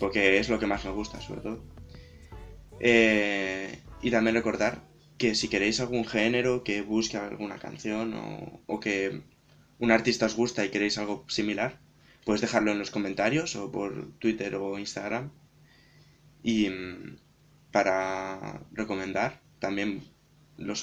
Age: 20-39